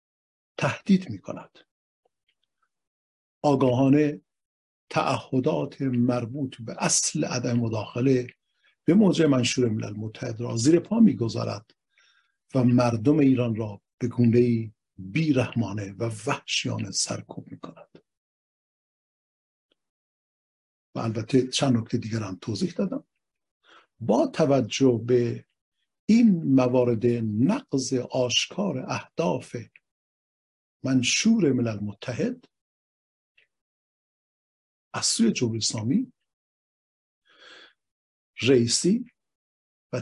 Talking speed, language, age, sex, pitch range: 80 wpm, Persian, 50-69, male, 110-135 Hz